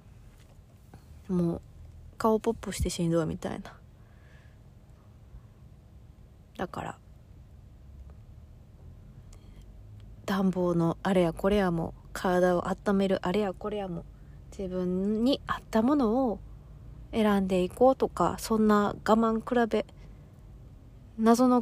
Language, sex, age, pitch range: Japanese, female, 20-39, 160-225 Hz